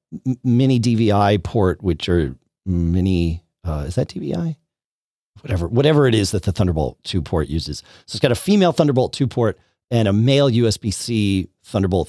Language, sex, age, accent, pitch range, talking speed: English, male, 40-59, American, 90-130 Hz, 165 wpm